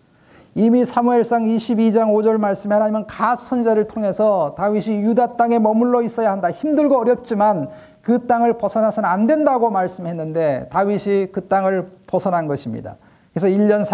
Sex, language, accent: male, Korean, native